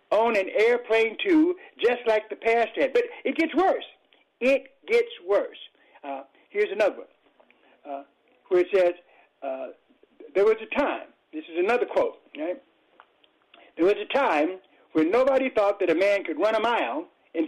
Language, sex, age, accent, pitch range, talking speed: English, male, 60-79, American, 215-360 Hz, 170 wpm